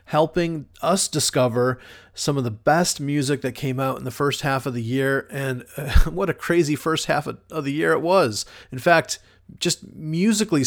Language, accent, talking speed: English, American, 190 wpm